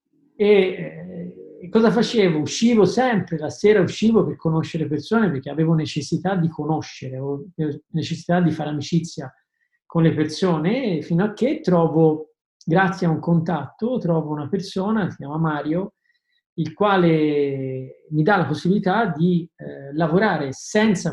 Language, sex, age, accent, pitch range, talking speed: Italian, male, 40-59, native, 150-190 Hz, 140 wpm